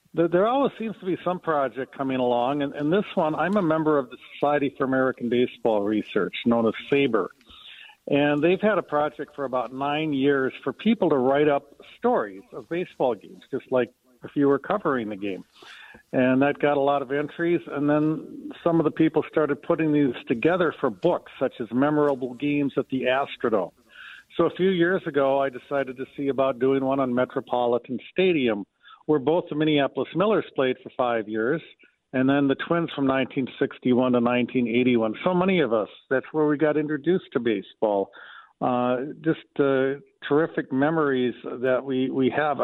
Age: 50-69